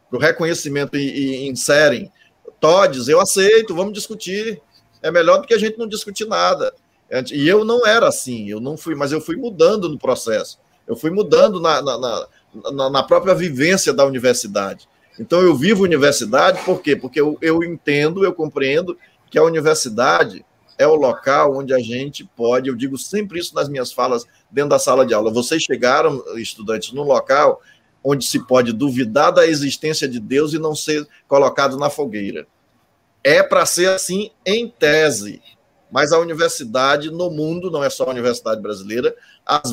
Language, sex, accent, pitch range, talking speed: Portuguese, male, Brazilian, 135-185 Hz, 170 wpm